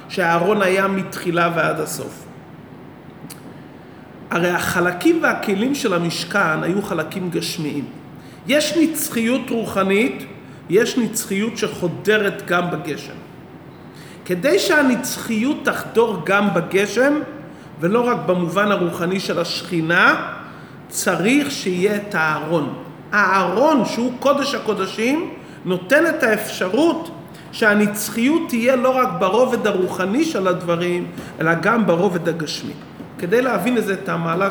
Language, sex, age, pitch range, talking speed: Hebrew, male, 40-59, 170-225 Hz, 105 wpm